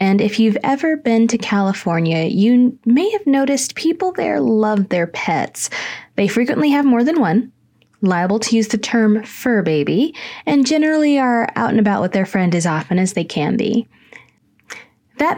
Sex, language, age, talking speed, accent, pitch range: female, English, 20-39, 175 wpm, American, 195-250 Hz